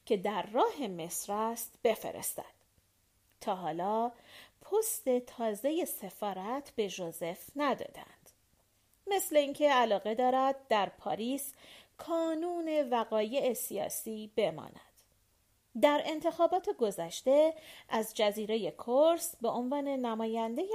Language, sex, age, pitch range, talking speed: Persian, female, 40-59, 205-305 Hz, 95 wpm